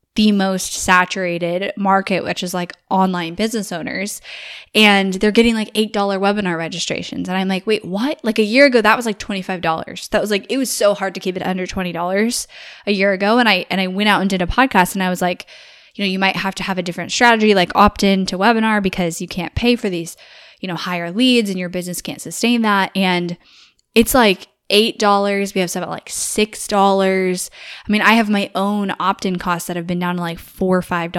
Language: English